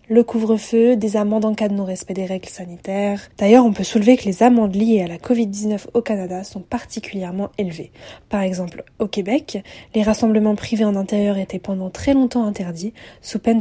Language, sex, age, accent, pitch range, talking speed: French, female, 20-39, French, 195-235 Hz, 190 wpm